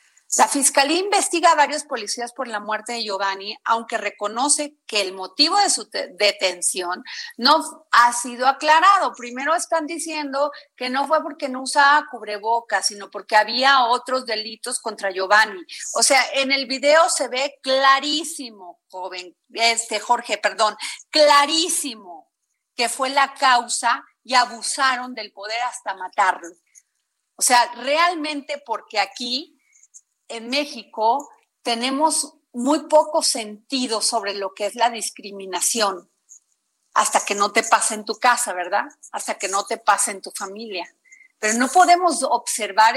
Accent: Mexican